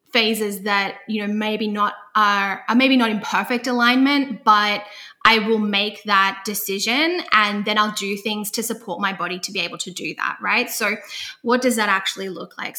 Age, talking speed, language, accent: 10-29, 195 wpm, English, Australian